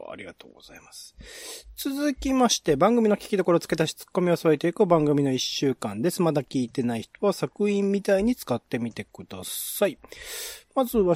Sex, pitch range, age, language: male, 130-190 Hz, 40-59, Japanese